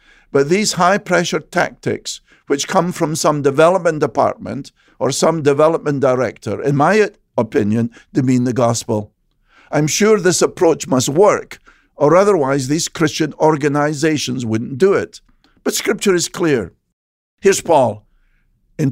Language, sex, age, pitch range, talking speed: English, male, 50-69, 130-175 Hz, 130 wpm